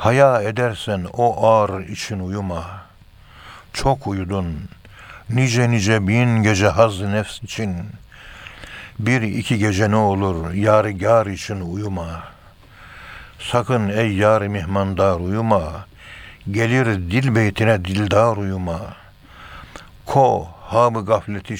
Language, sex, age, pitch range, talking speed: Turkish, male, 60-79, 95-110 Hz, 110 wpm